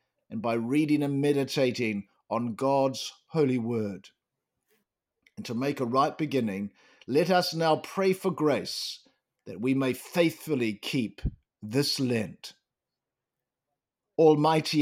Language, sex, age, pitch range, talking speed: English, male, 50-69, 125-165 Hz, 115 wpm